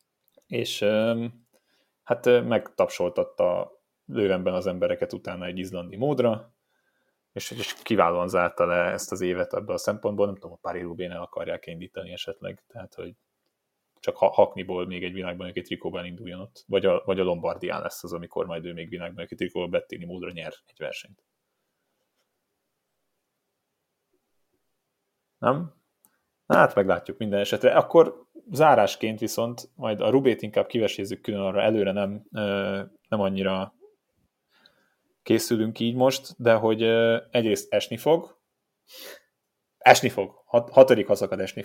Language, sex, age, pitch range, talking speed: Hungarian, male, 30-49, 95-120 Hz, 135 wpm